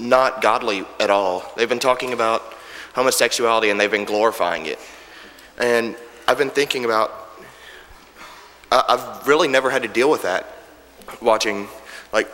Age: 30-49